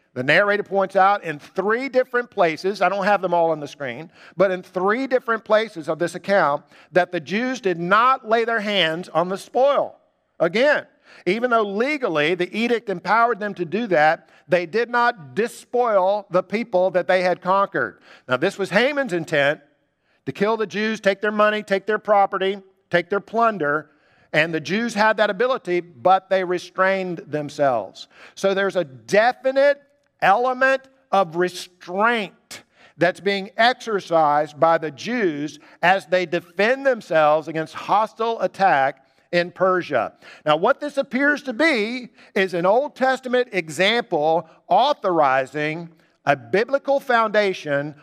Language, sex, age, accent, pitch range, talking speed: English, male, 50-69, American, 160-215 Hz, 150 wpm